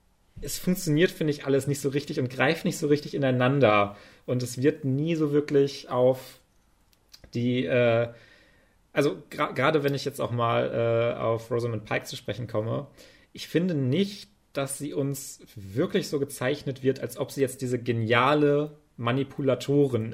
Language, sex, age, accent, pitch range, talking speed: German, male, 30-49, German, 125-155 Hz, 165 wpm